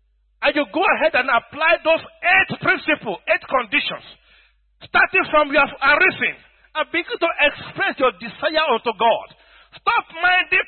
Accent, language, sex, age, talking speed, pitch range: Nigerian, English, male, 50-69, 140 wpm, 310-380 Hz